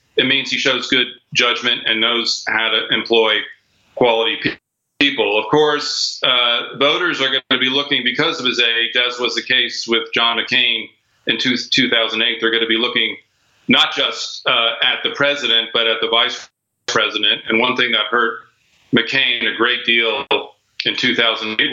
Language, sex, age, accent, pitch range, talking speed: English, male, 40-59, American, 110-130 Hz, 175 wpm